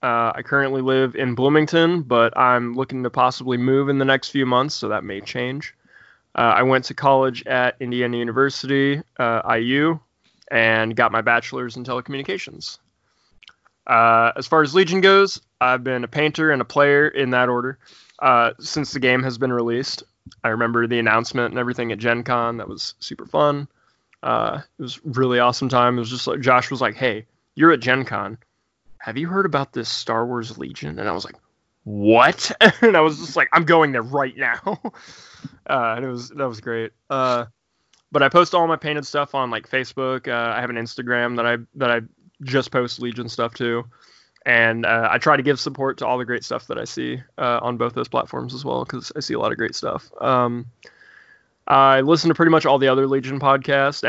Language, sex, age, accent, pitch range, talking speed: English, male, 20-39, American, 115-140 Hz, 210 wpm